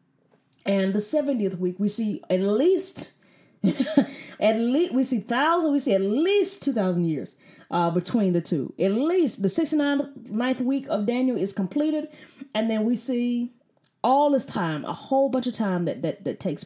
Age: 20-39